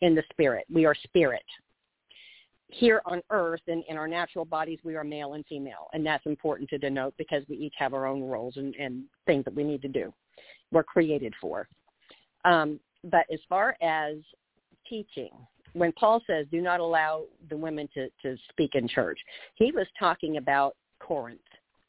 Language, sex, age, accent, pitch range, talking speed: English, female, 50-69, American, 150-175 Hz, 185 wpm